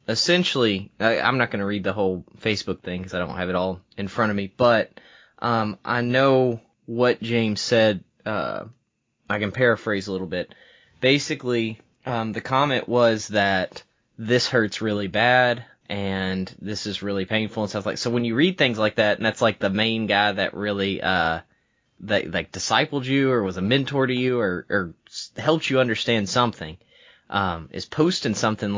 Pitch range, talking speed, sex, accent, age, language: 95-115 Hz, 185 wpm, male, American, 20-39, English